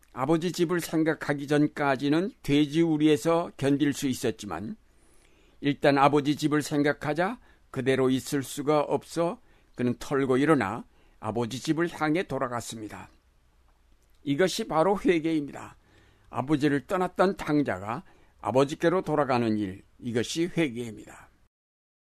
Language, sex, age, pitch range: Korean, male, 60-79, 120-160 Hz